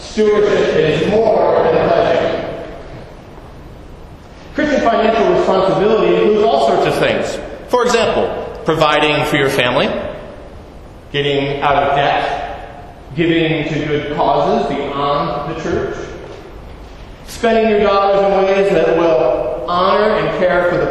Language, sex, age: English, male, 40-59